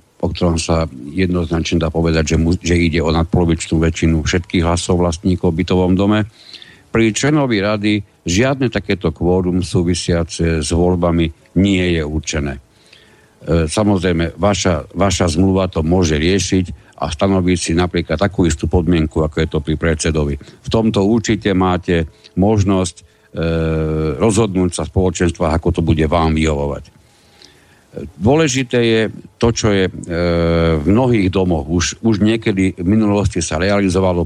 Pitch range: 85-100 Hz